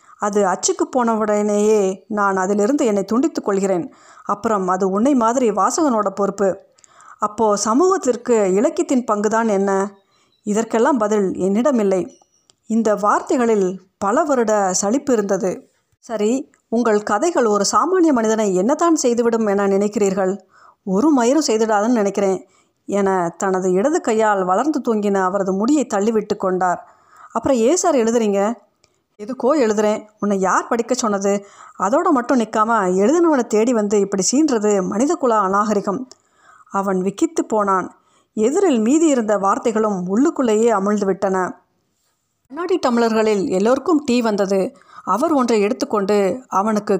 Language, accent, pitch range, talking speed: Tamil, native, 200-255 Hz, 115 wpm